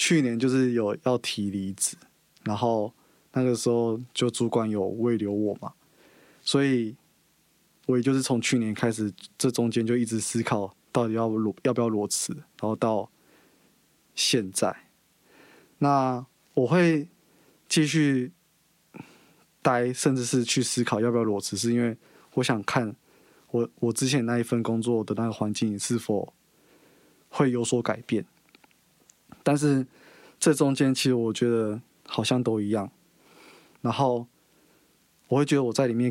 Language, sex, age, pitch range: Chinese, male, 20-39, 110-135 Hz